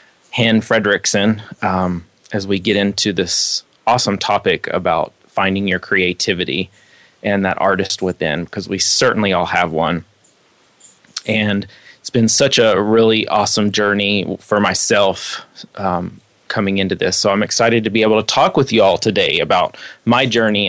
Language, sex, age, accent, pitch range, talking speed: English, male, 30-49, American, 100-115 Hz, 155 wpm